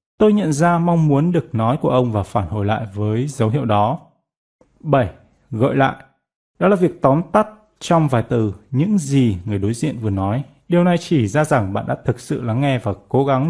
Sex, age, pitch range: male, 20-39, 110-160 Hz